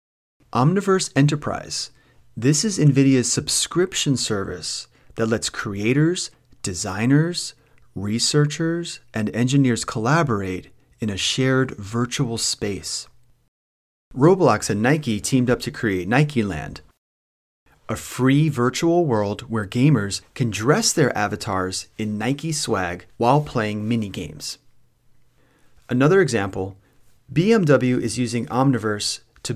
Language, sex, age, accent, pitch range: Japanese, male, 30-49, American, 105-140 Hz